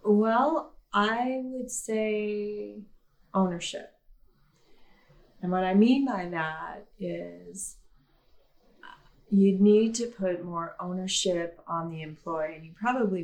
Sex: female